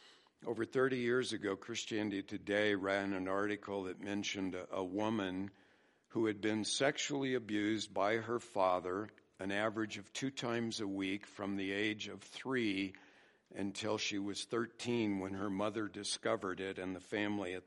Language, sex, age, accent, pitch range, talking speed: English, male, 60-79, American, 100-120 Hz, 155 wpm